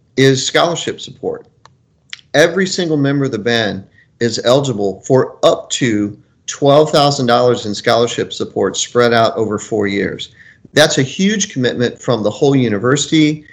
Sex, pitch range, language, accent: male, 120-150 Hz, English, American